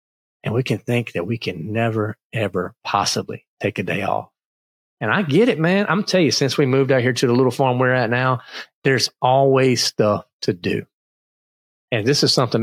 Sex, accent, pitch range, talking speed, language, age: male, American, 110-140 Hz, 215 wpm, English, 40-59